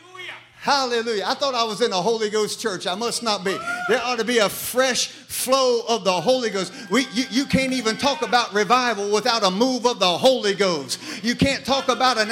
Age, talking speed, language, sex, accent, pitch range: 50-69, 215 wpm, English, male, American, 215-255 Hz